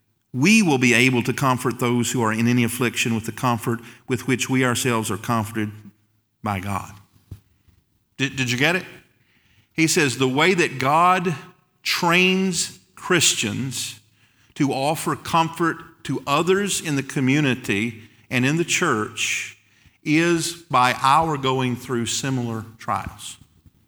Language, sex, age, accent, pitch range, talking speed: English, male, 50-69, American, 105-135 Hz, 140 wpm